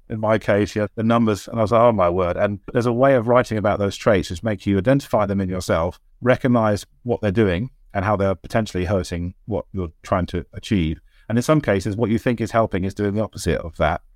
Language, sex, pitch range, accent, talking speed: English, male, 85-105 Hz, British, 245 wpm